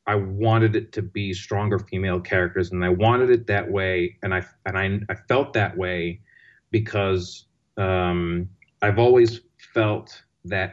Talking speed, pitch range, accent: 155 wpm, 100-120 Hz, American